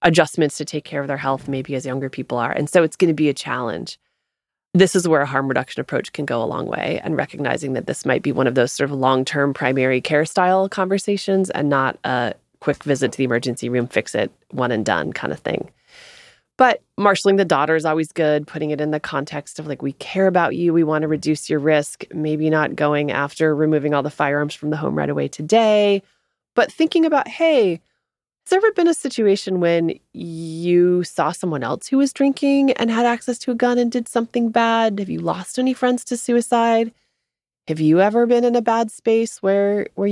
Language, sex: English, female